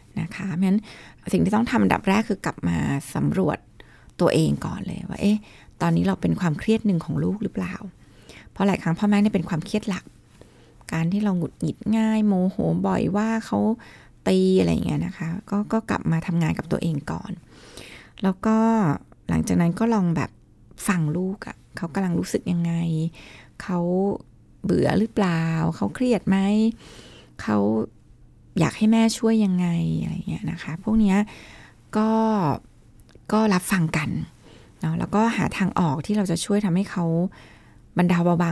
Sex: female